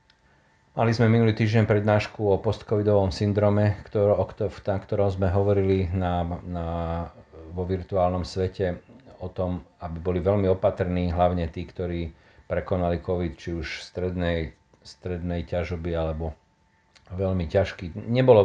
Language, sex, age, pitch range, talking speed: Slovak, male, 40-59, 85-100 Hz, 120 wpm